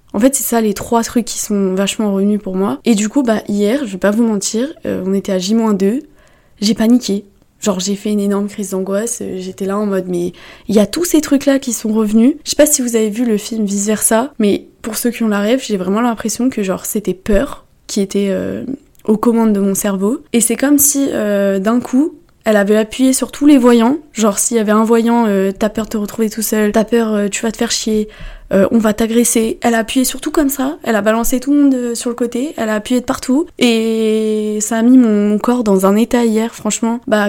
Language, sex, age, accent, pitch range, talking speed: French, female, 20-39, French, 205-245 Hz, 255 wpm